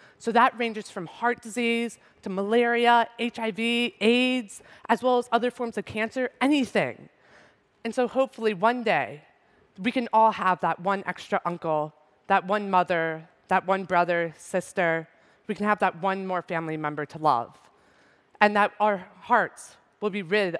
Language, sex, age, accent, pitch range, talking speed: Spanish, female, 30-49, American, 175-235 Hz, 160 wpm